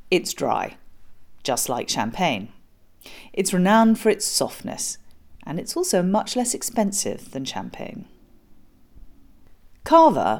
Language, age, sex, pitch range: English, 40-59, female, 140-225 Hz